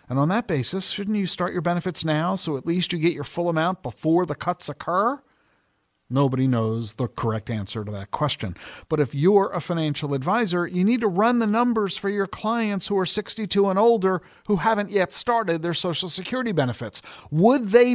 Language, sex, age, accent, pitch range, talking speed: English, male, 50-69, American, 135-195 Hz, 200 wpm